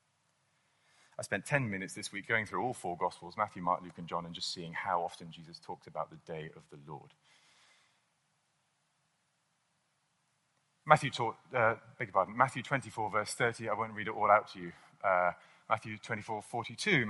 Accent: British